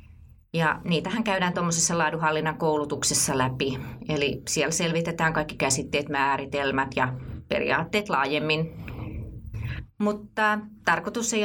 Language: Finnish